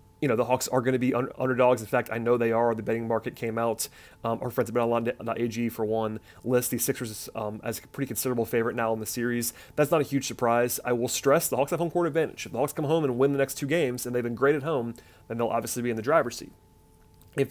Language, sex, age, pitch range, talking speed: English, male, 30-49, 115-135 Hz, 280 wpm